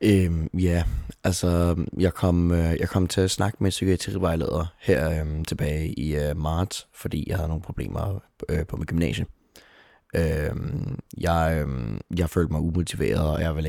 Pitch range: 75-90 Hz